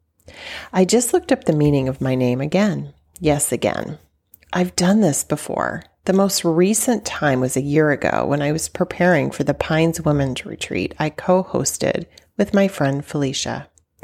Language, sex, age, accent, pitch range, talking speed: English, female, 30-49, American, 140-190 Hz, 165 wpm